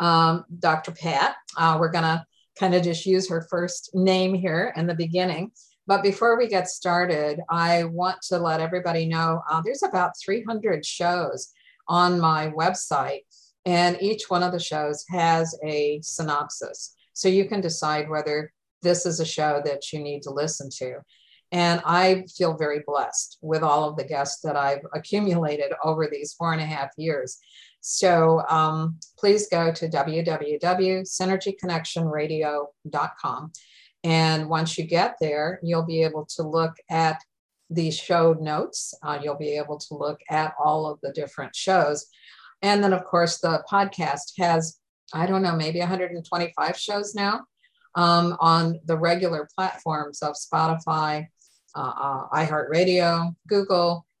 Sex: female